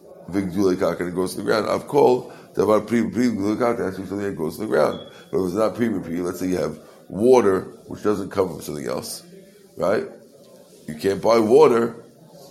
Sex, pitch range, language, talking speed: male, 90-110 Hz, English, 170 wpm